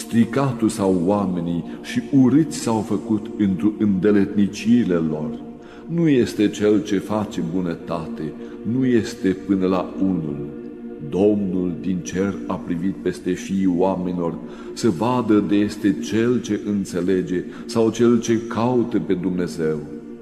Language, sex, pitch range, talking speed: Romanian, male, 85-110 Hz, 120 wpm